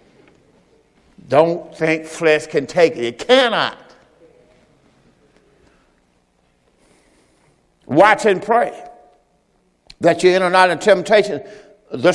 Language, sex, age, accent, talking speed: English, male, 60-79, American, 95 wpm